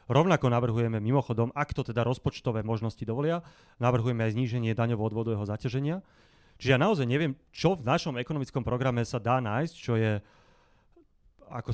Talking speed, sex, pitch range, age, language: 155 wpm, male, 115-140 Hz, 30-49, Slovak